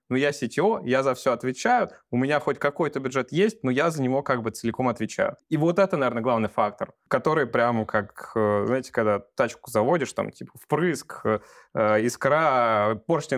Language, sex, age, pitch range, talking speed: Russian, male, 20-39, 115-145 Hz, 175 wpm